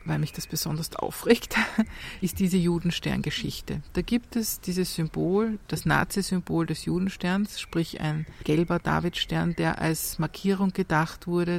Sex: female